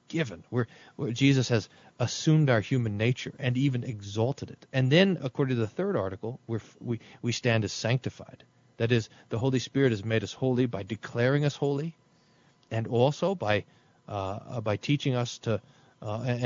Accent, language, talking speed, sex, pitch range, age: American, English, 170 wpm, male, 115-155 Hz, 40-59